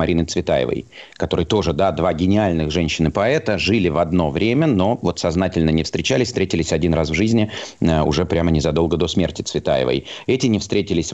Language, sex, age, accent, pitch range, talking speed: Russian, male, 30-49, native, 80-105 Hz, 165 wpm